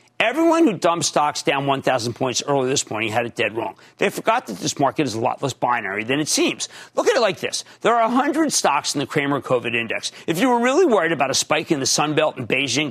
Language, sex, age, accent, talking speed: English, male, 50-69, American, 255 wpm